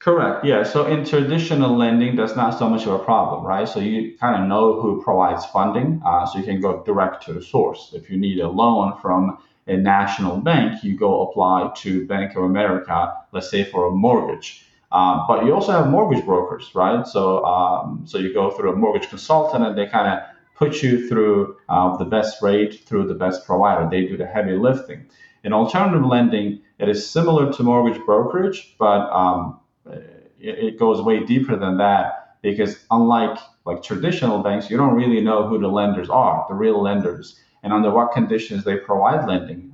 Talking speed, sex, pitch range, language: 195 wpm, male, 95-120 Hz, English